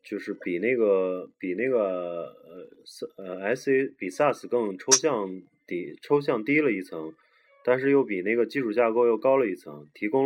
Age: 20-39